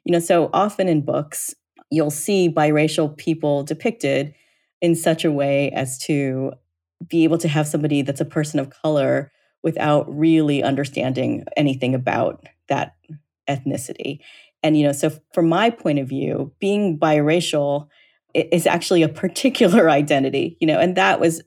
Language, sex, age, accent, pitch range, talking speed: English, female, 30-49, American, 140-170 Hz, 155 wpm